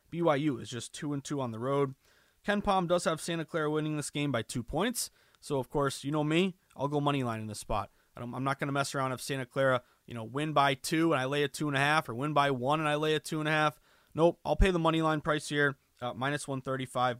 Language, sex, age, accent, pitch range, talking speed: English, male, 20-39, American, 125-155 Hz, 285 wpm